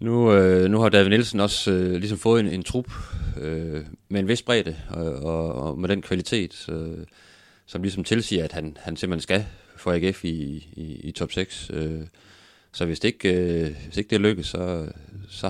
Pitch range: 80-95 Hz